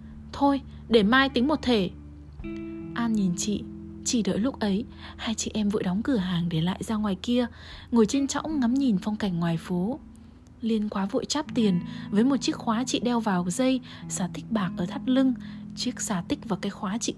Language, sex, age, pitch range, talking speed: Vietnamese, female, 20-39, 195-250 Hz, 210 wpm